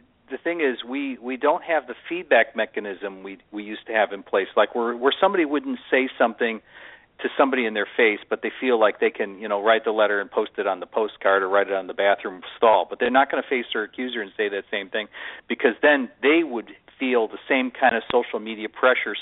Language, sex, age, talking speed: English, male, 50-69, 245 wpm